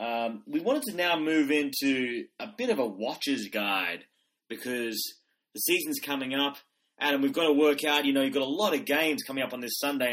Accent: Australian